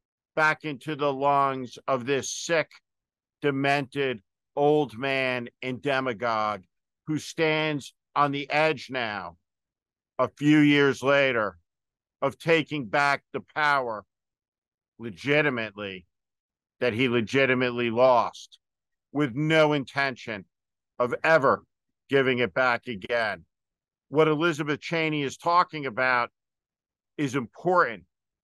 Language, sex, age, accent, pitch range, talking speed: English, male, 50-69, American, 120-155 Hz, 105 wpm